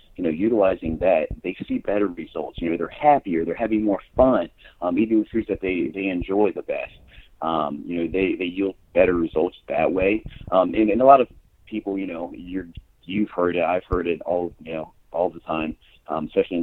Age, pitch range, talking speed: 30-49, 80-100 Hz, 215 wpm